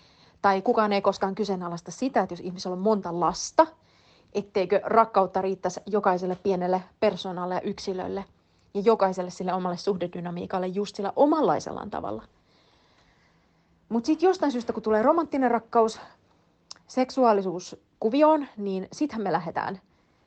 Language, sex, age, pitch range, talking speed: Finnish, female, 30-49, 180-220 Hz, 125 wpm